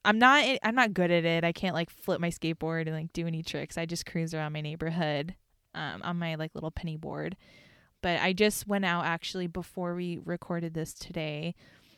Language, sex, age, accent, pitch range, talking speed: English, female, 20-39, American, 160-195 Hz, 210 wpm